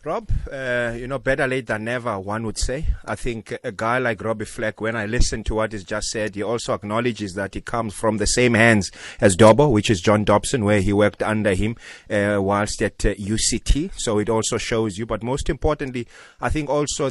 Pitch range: 110-130 Hz